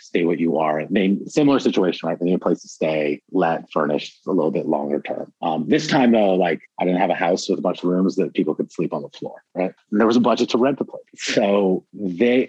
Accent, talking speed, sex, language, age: American, 270 wpm, male, English, 30-49